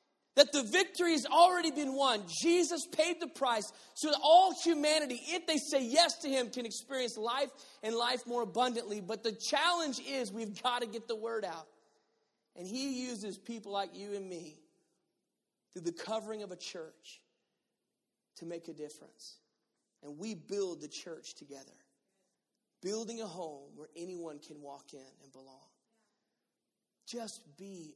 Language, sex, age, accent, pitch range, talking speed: English, male, 40-59, American, 180-270 Hz, 160 wpm